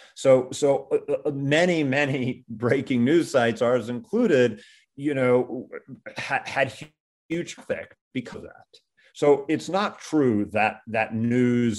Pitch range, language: 110-135 Hz, English